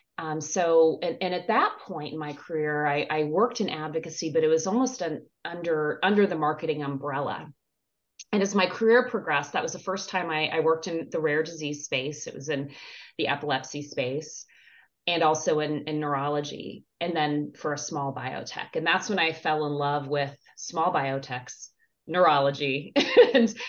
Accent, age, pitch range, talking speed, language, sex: American, 30-49, 150-190 Hz, 180 wpm, English, female